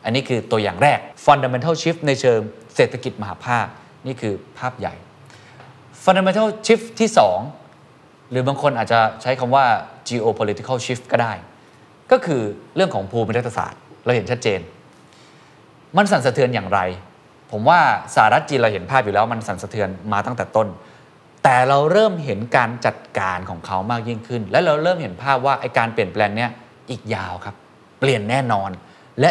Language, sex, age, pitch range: Thai, male, 20-39, 110-155 Hz